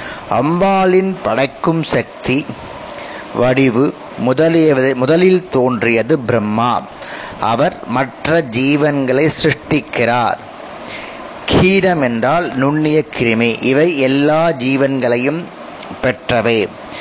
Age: 30-49